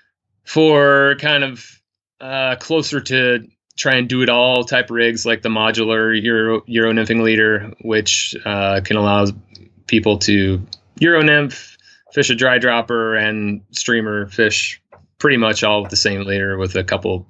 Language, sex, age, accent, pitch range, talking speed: English, male, 30-49, American, 100-120 Hz, 155 wpm